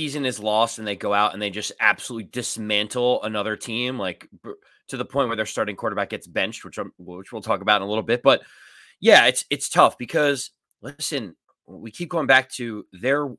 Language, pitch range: English, 110-140 Hz